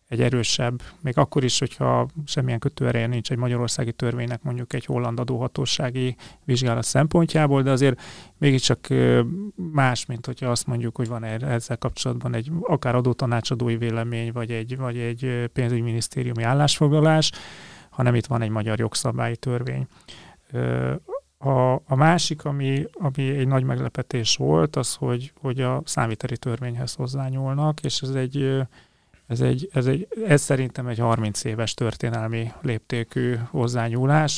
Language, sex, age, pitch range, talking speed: Hungarian, male, 30-49, 115-135 Hz, 135 wpm